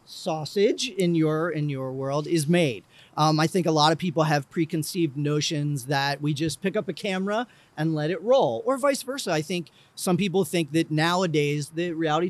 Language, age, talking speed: English, 40-59, 200 wpm